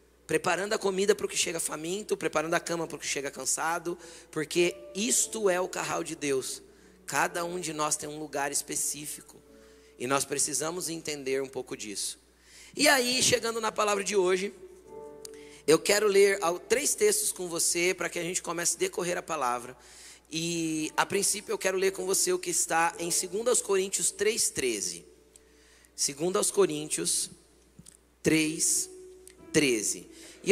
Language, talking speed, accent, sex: Portuguese, 160 wpm, Brazilian, male